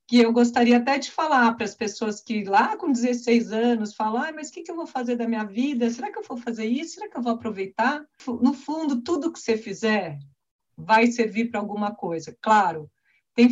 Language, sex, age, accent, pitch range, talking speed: Portuguese, female, 50-69, Brazilian, 195-245 Hz, 220 wpm